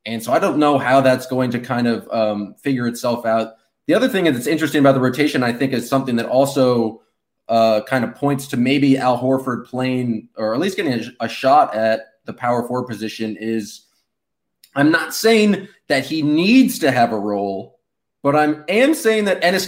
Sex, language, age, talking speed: male, English, 20-39, 205 wpm